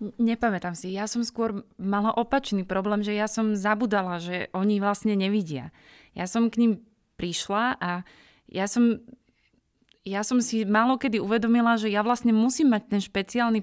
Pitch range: 195-225 Hz